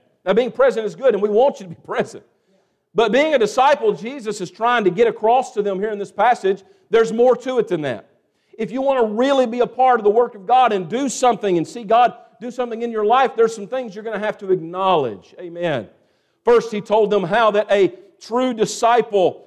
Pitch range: 195-225 Hz